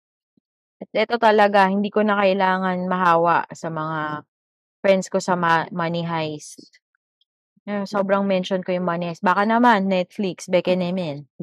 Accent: native